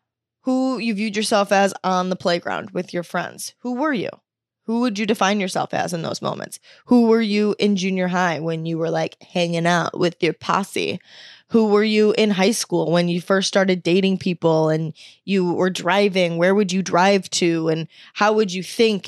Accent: American